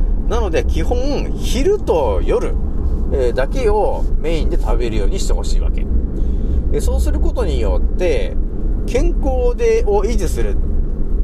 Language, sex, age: Japanese, male, 30-49